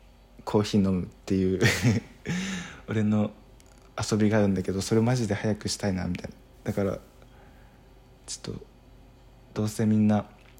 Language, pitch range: Japanese, 100-125 Hz